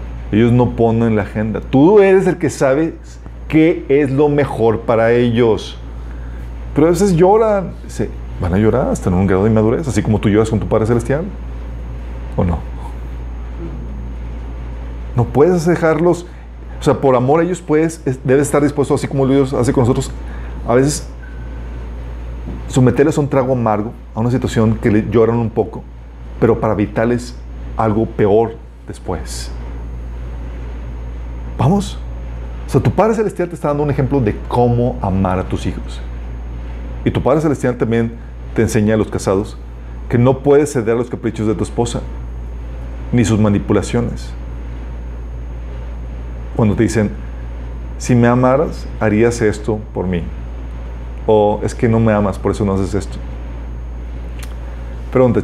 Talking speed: 155 wpm